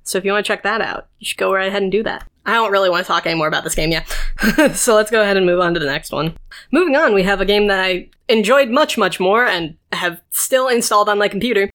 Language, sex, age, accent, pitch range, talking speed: English, female, 20-39, American, 190-255 Hz, 290 wpm